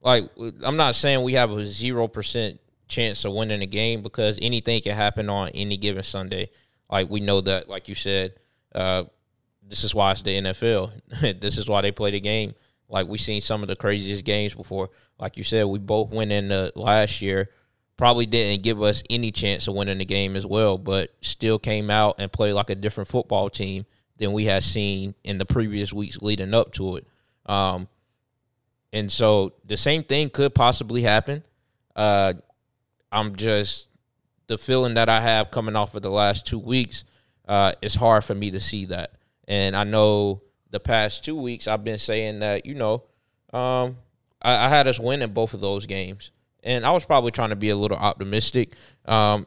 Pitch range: 100-115 Hz